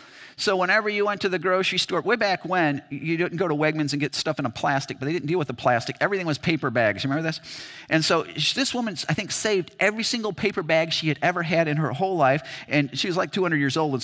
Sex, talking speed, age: male, 270 wpm, 50-69